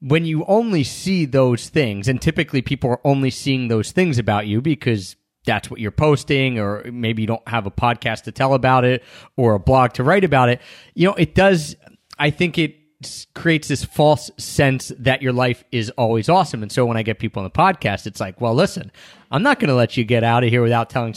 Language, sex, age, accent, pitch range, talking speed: English, male, 30-49, American, 120-155 Hz, 230 wpm